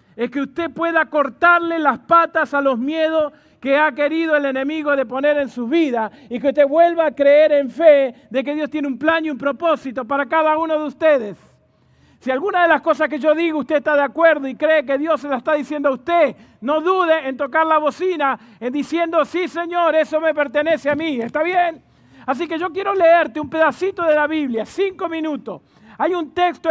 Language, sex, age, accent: Spanish, male, 50-69, Argentinian